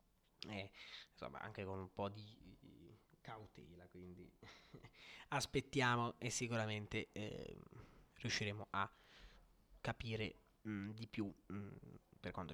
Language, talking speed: Italian, 95 wpm